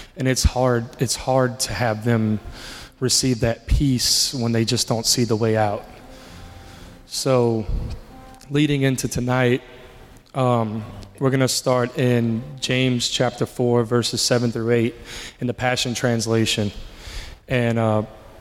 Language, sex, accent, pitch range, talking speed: English, male, American, 110-130 Hz, 135 wpm